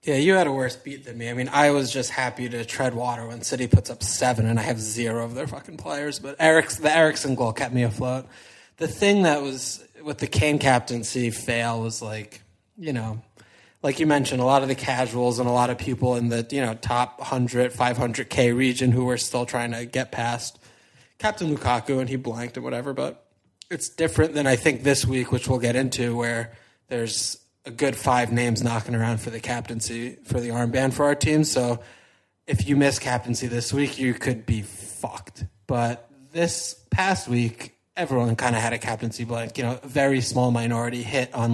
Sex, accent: male, American